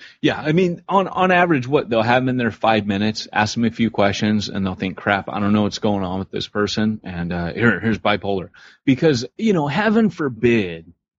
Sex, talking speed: male, 225 wpm